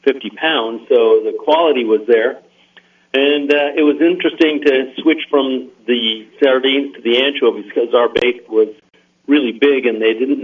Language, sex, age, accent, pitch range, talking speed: English, male, 50-69, American, 115-175 Hz, 165 wpm